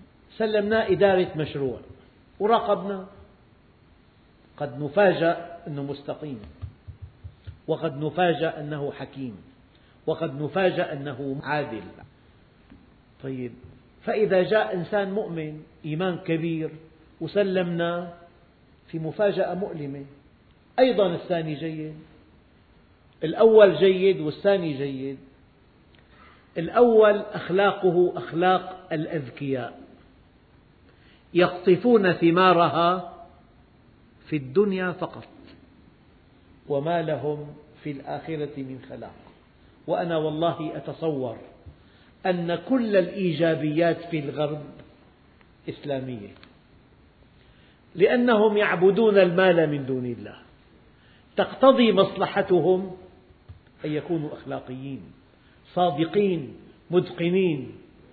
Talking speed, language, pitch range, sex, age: 70 wpm, Arabic, 145-185 Hz, male, 50-69